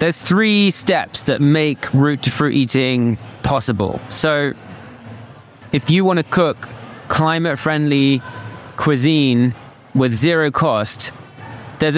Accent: British